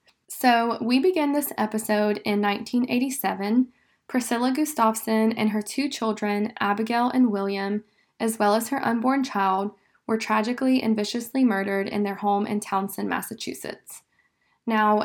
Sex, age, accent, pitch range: female, 20-39, American, 205-240 Hz